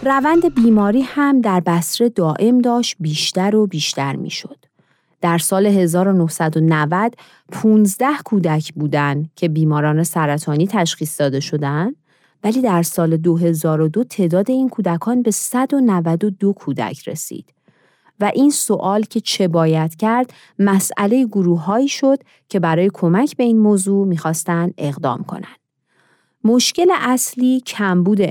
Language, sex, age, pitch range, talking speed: Persian, female, 40-59, 160-235 Hz, 120 wpm